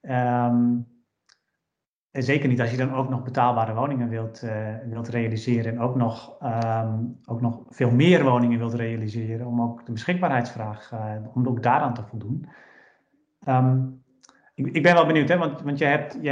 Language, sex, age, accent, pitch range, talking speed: Dutch, male, 30-49, Dutch, 125-145 Hz, 175 wpm